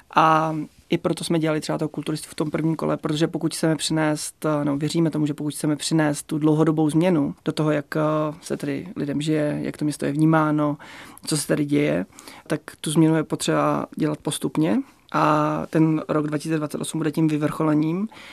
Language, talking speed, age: Czech, 185 wpm, 20-39